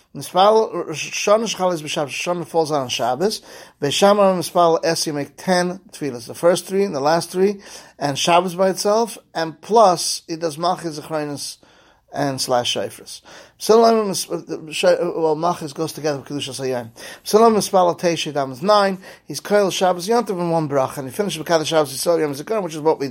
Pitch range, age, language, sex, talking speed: 145-195 Hz, 30-49, English, male, 155 wpm